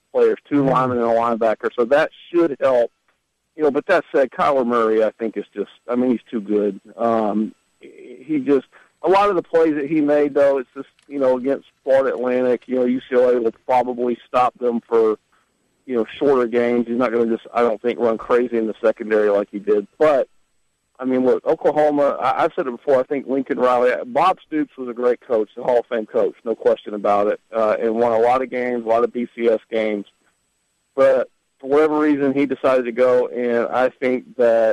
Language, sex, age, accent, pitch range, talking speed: English, male, 50-69, American, 115-140 Hz, 220 wpm